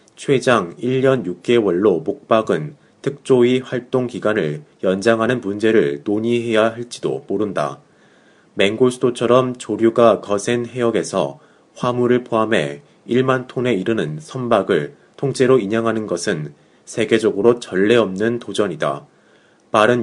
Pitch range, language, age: 100-125 Hz, Korean, 30-49